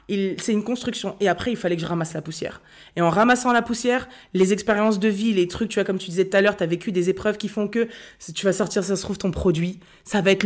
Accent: French